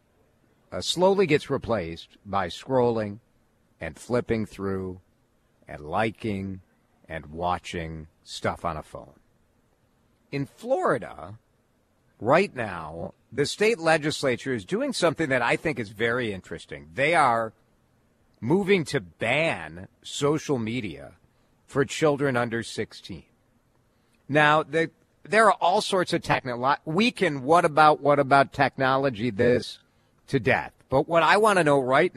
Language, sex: English, male